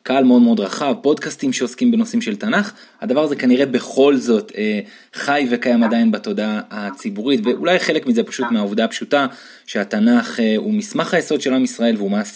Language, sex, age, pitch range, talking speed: Hebrew, male, 20-39, 145-230 Hz, 120 wpm